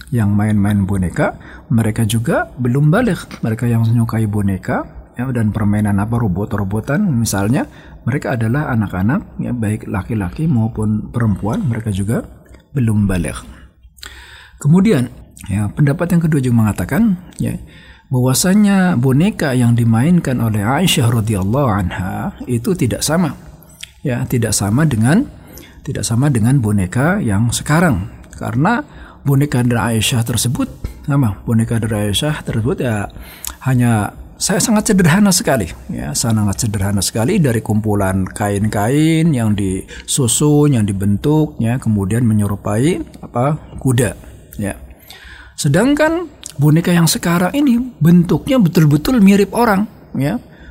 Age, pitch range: 50-69, 105-150 Hz